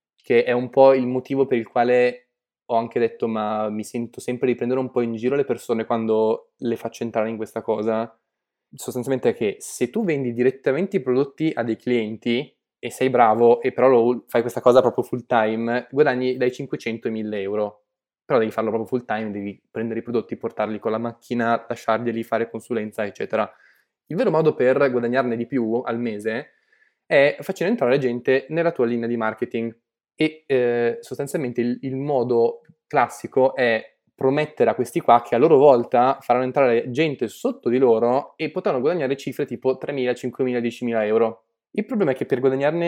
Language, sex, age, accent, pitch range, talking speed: Italian, male, 10-29, native, 115-130 Hz, 190 wpm